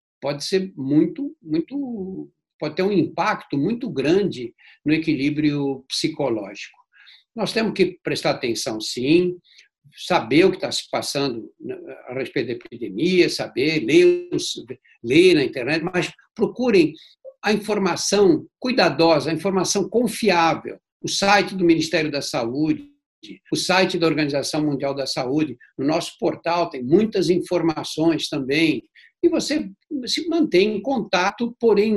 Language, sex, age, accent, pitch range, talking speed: Portuguese, male, 60-79, Brazilian, 155-240 Hz, 130 wpm